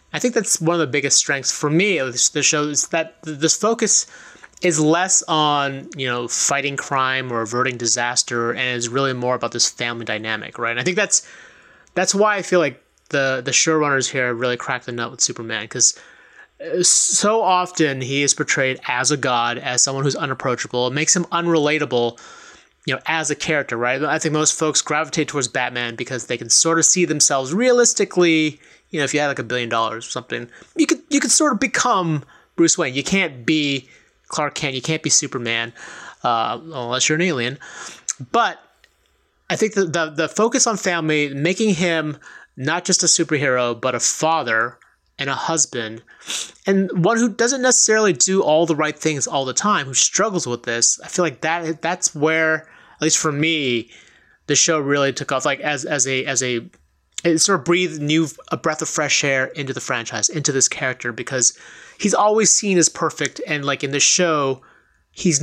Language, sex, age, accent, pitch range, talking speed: English, male, 30-49, American, 130-170 Hz, 195 wpm